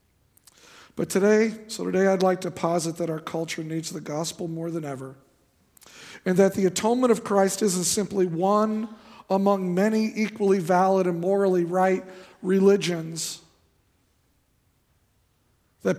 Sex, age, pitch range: male, 50-69, 170-200 Hz